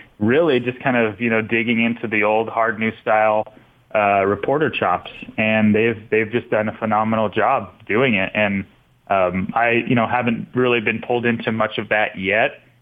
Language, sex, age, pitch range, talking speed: English, male, 30-49, 110-125 Hz, 180 wpm